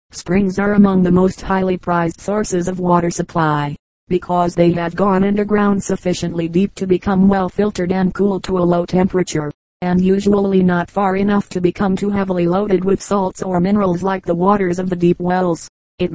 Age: 40-59